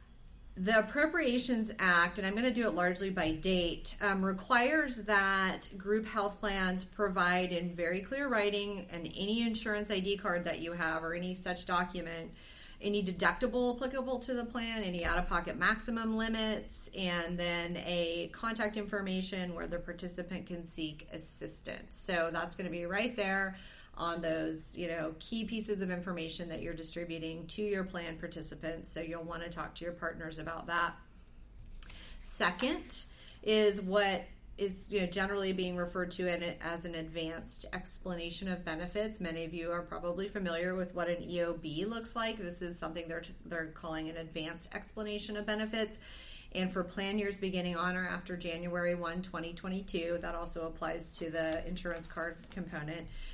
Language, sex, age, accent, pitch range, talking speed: English, female, 30-49, American, 170-205 Hz, 165 wpm